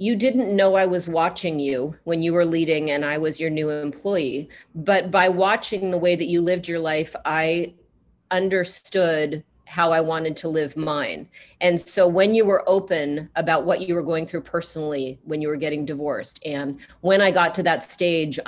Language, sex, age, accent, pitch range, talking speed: English, female, 40-59, American, 160-190 Hz, 195 wpm